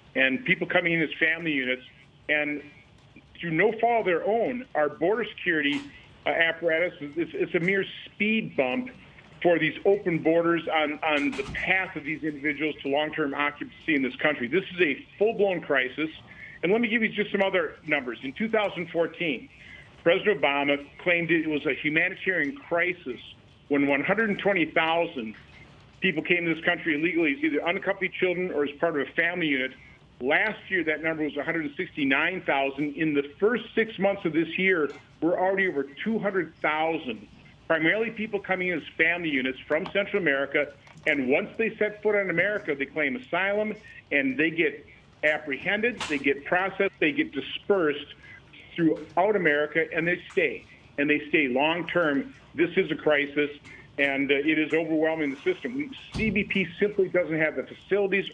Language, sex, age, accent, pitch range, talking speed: English, male, 50-69, American, 150-195 Hz, 165 wpm